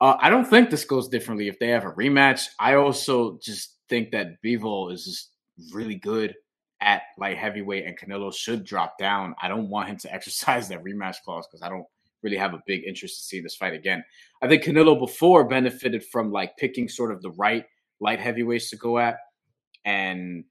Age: 20-39